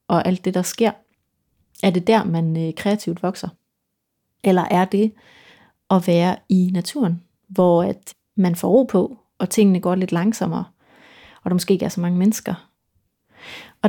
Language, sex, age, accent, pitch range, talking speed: Danish, female, 30-49, native, 180-210 Hz, 165 wpm